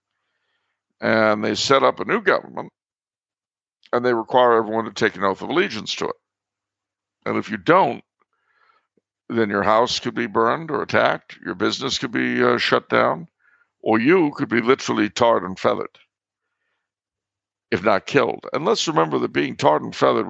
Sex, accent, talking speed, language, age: male, American, 170 wpm, English, 60-79